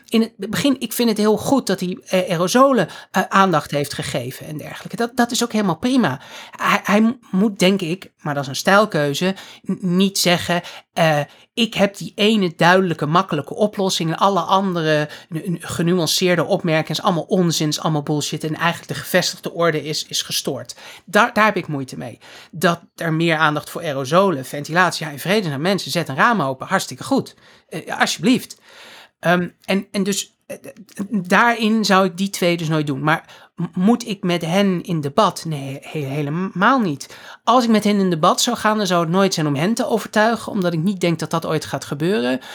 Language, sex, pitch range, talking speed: Dutch, male, 155-200 Hz, 185 wpm